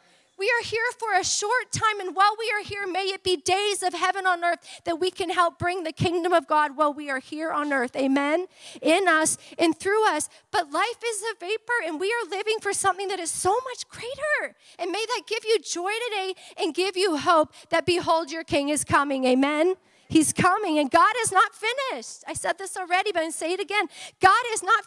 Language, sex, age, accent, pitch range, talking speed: English, female, 40-59, American, 320-405 Hz, 230 wpm